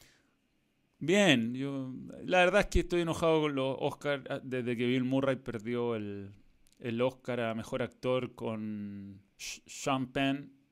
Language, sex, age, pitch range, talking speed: Spanish, male, 30-49, 120-155 Hz, 140 wpm